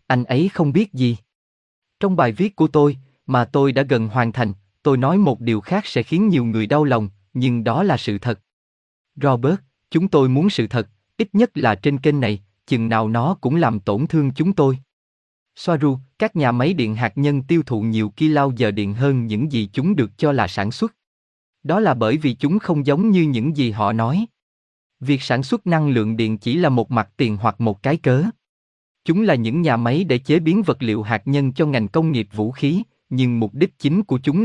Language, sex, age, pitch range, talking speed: Vietnamese, male, 20-39, 115-155 Hz, 220 wpm